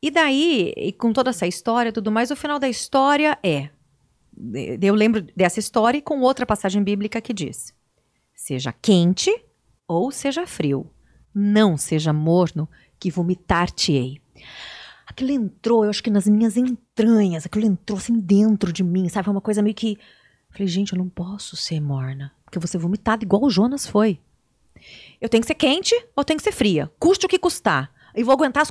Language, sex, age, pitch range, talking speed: Portuguese, female, 30-49, 175-245 Hz, 190 wpm